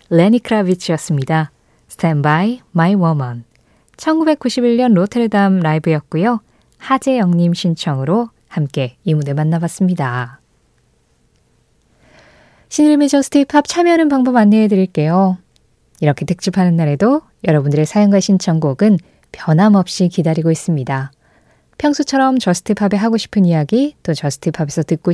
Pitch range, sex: 155-230 Hz, female